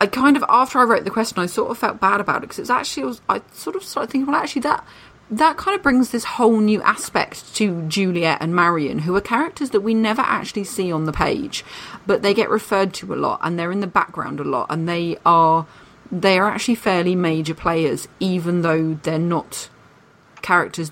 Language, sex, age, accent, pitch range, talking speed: English, female, 30-49, British, 160-195 Hz, 225 wpm